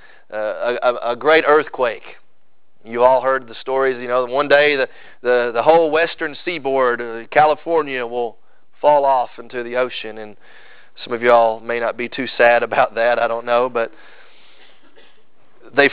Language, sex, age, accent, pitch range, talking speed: English, male, 40-59, American, 115-145 Hz, 170 wpm